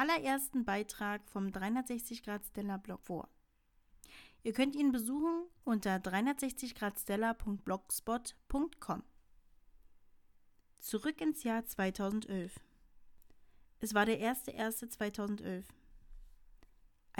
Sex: female